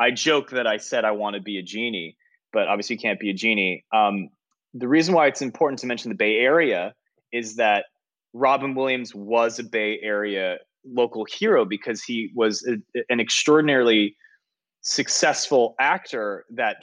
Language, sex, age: English, male, 20-39